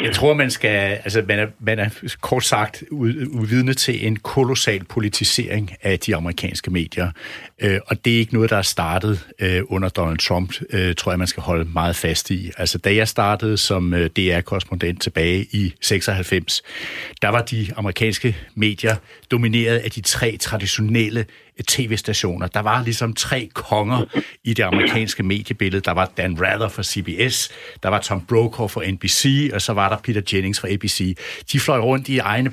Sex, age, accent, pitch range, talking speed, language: male, 60-79, native, 100-130 Hz, 180 wpm, Danish